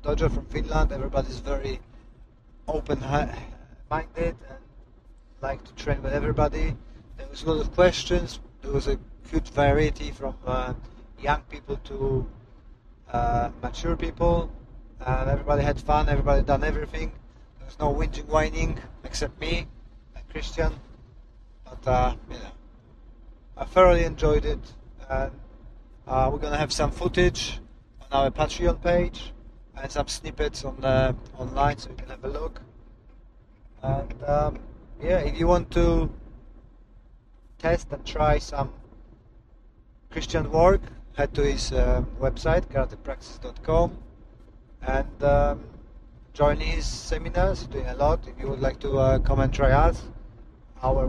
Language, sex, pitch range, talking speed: English, male, 125-150 Hz, 140 wpm